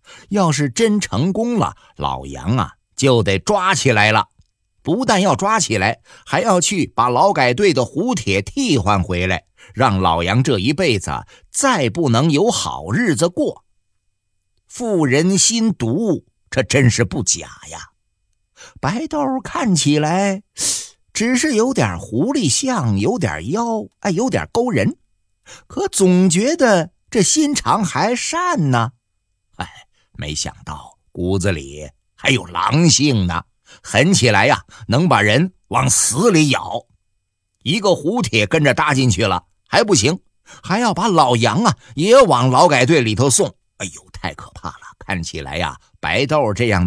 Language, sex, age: Chinese, male, 50-69